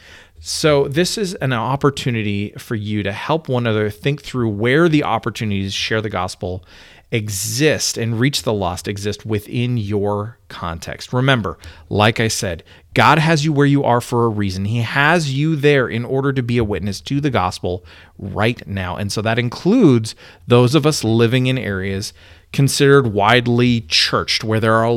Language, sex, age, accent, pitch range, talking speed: English, male, 30-49, American, 100-135 Hz, 175 wpm